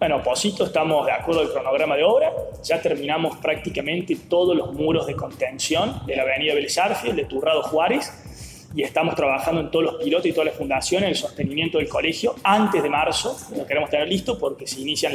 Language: Spanish